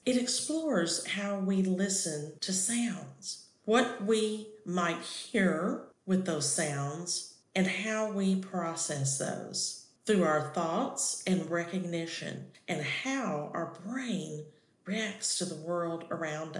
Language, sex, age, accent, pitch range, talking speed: English, female, 50-69, American, 160-210 Hz, 120 wpm